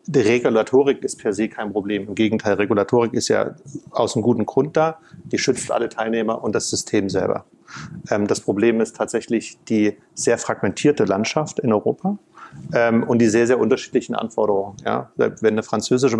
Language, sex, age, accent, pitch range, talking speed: German, male, 40-59, German, 110-140 Hz, 165 wpm